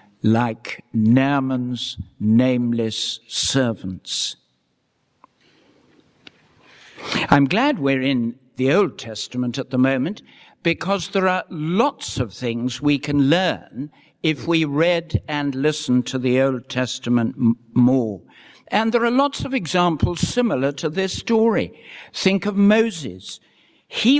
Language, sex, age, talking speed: English, male, 60-79, 115 wpm